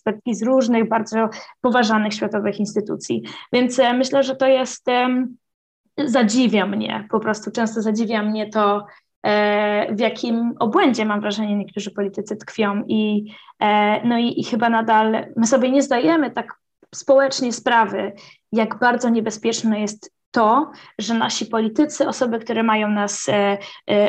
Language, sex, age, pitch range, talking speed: Polish, female, 20-39, 215-250 Hz, 135 wpm